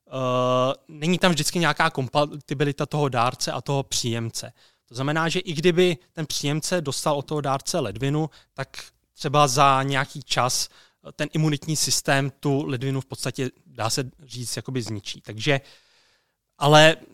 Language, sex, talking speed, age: Czech, male, 145 wpm, 20-39